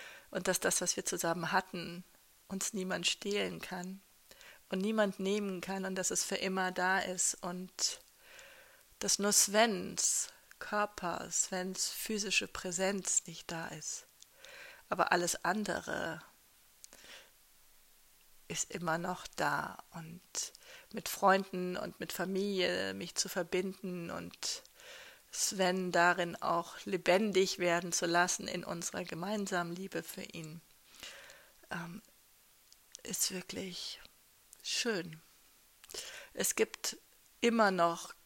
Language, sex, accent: German, female, German